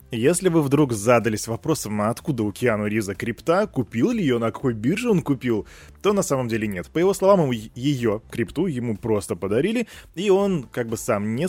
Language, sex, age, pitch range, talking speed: Russian, male, 20-39, 105-150 Hz, 200 wpm